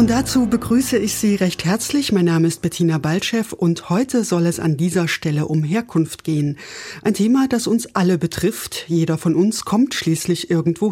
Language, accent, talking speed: German, German, 185 wpm